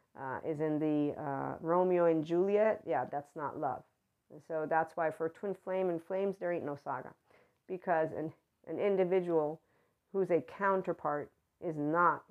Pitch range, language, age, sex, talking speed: 150-180 Hz, English, 40-59, female, 165 wpm